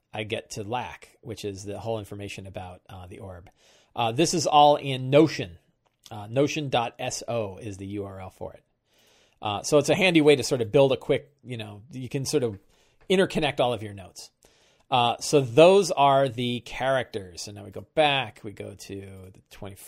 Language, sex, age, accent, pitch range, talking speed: English, male, 40-59, American, 110-150 Hz, 195 wpm